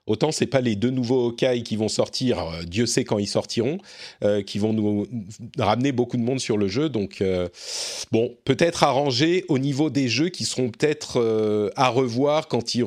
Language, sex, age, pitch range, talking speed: French, male, 40-59, 110-165 Hz, 210 wpm